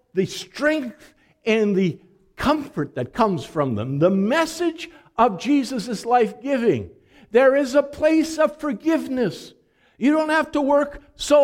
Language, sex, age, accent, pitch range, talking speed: English, male, 60-79, American, 170-280 Hz, 140 wpm